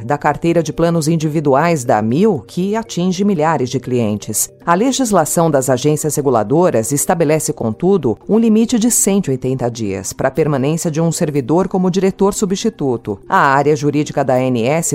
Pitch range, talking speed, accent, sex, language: 135-190 Hz, 155 wpm, Brazilian, female, Portuguese